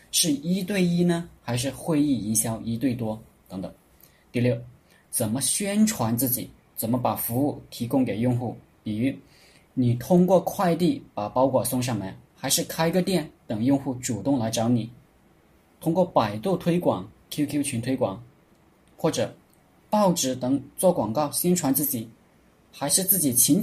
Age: 20-39